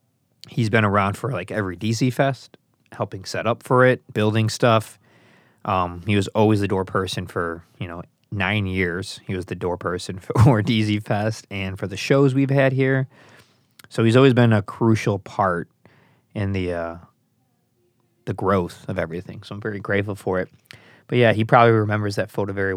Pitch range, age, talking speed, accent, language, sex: 100-120 Hz, 20-39, 180 wpm, American, English, male